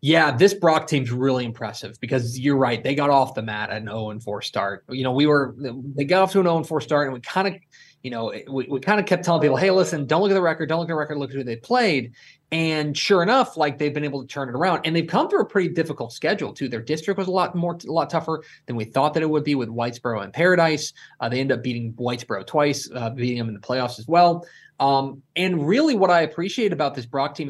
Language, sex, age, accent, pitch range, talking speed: English, male, 20-39, American, 120-155 Hz, 275 wpm